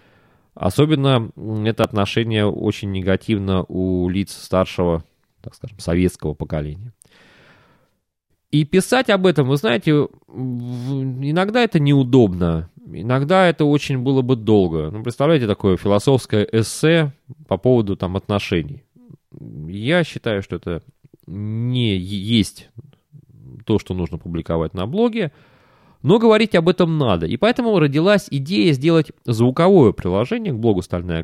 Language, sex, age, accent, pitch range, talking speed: Russian, male, 20-39, native, 100-155 Hz, 120 wpm